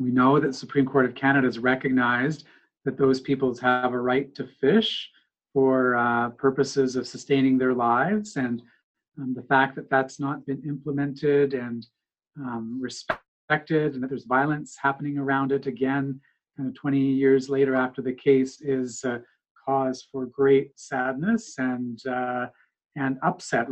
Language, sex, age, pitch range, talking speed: English, male, 40-59, 130-145 Hz, 155 wpm